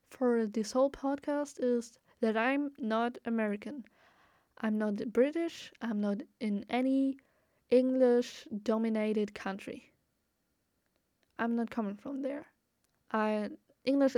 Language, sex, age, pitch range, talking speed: English, female, 10-29, 215-250 Hz, 110 wpm